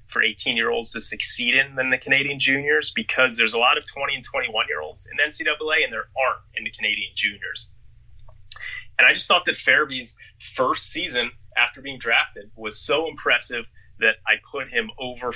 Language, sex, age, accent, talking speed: English, male, 30-49, American, 175 wpm